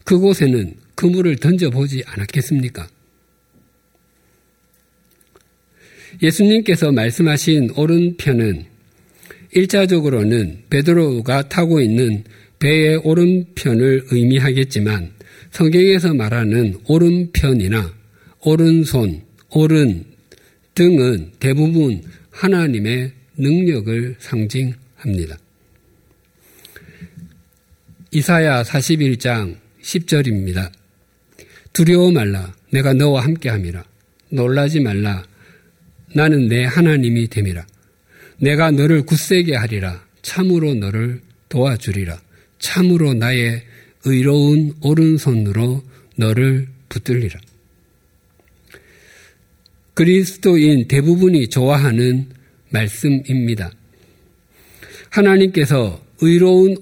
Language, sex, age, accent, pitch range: Korean, male, 50-69, native, 105-155 Hz